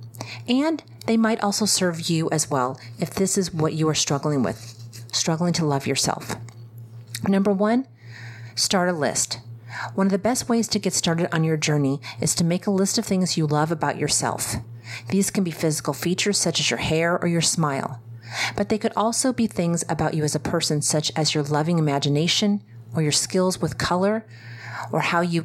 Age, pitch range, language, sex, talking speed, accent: 40-59, 125-185 Hz, English, female, 195 wpm, American